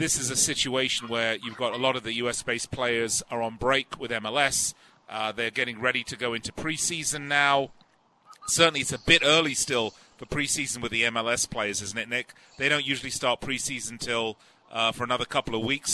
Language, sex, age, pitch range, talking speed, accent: English, male, 40-59, 125-160 Hz, 200 wpm, British